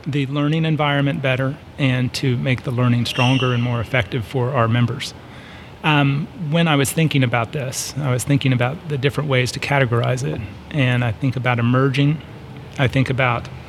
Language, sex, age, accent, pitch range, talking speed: English, male, 30-49, American, 125-145 Hz, 180 wpm